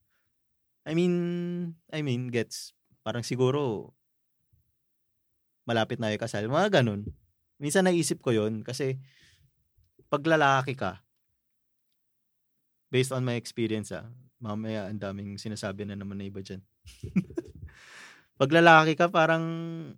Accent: native